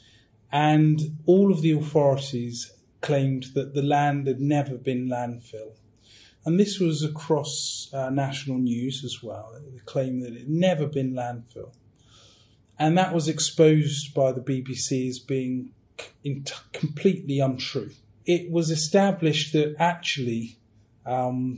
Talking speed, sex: 140 wpm, male